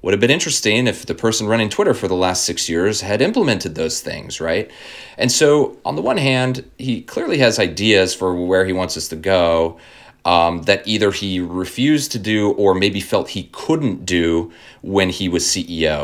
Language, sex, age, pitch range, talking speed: English, male, 30-49, 85-115 Hz, 200 wpm